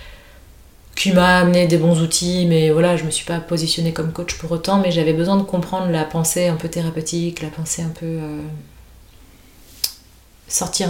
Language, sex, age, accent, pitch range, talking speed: French, female, 30-49, French, 155-175 Hz, 180 wpm